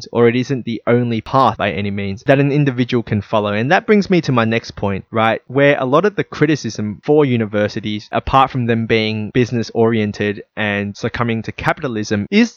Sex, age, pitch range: male, 20-39, 110-140 Hz